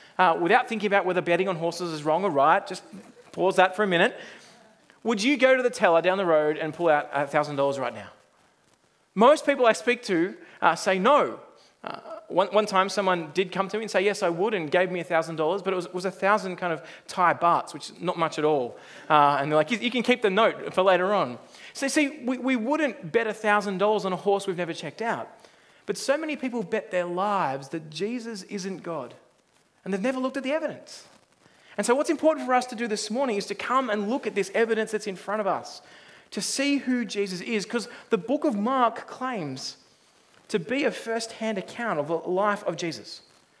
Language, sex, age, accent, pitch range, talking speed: English, male, 30-49, Australian, 185-245 Hz, 225 wpm